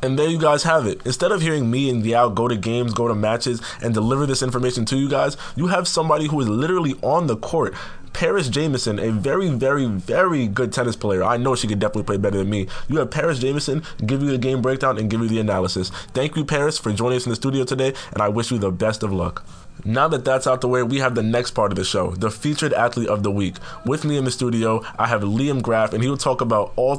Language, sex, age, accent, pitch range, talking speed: English, male, 20-39, American, 105-130 Hz, 260 wpm